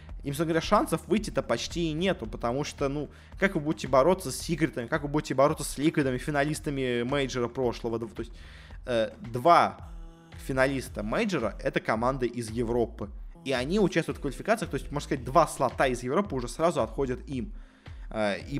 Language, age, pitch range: Russian, 20-39, 120-155 Hz